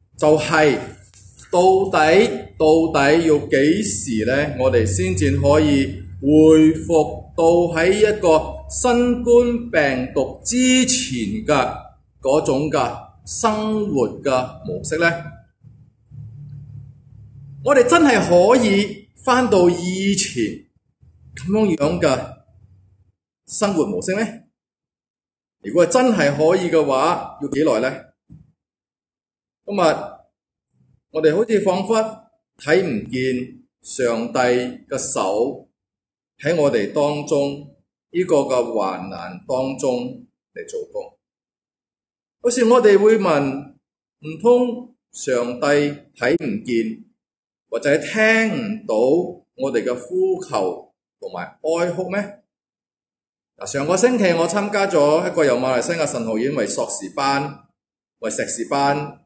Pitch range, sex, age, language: 130-215 Hz, male, 30-49, English